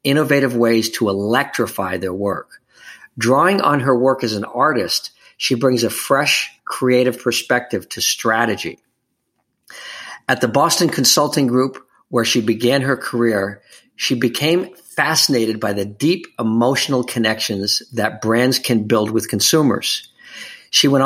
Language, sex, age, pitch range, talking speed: English, male, 50-69, 110-135 Hz, 135 wpm